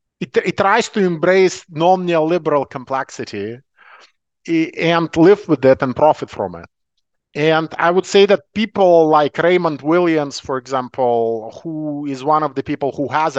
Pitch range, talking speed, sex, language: 110-165 Hz, 150 wpm, male, German